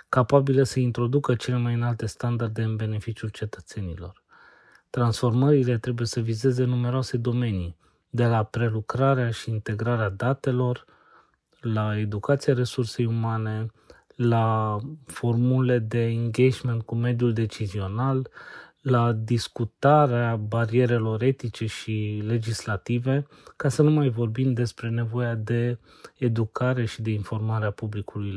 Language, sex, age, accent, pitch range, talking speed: Romanian, male, 30-49, native, 110-125 Hz, 110 wpm